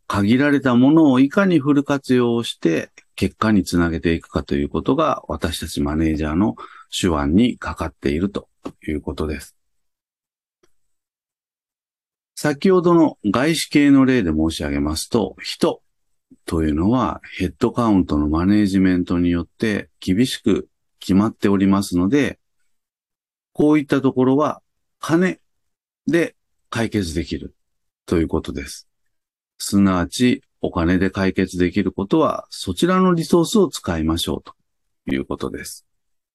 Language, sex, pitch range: Japanese, male, 80-125 Hz